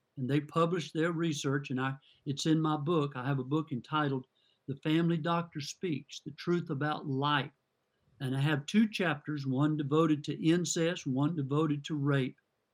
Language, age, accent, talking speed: English, 50-69, American, 175 wpm